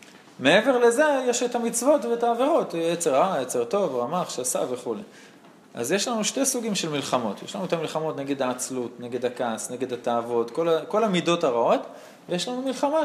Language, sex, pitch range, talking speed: Hebrew, male, 130-215 Hz, 180 wpm